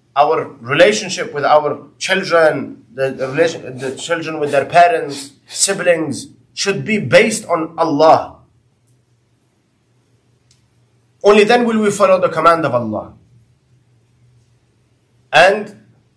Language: English